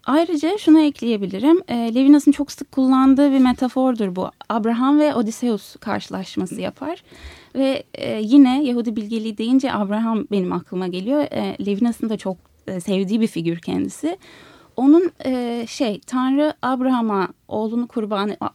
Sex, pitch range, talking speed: female, 220-285 Hz, 135 wpm